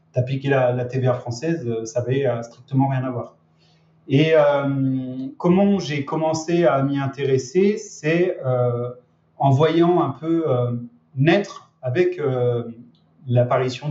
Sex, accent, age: male, French, 30-49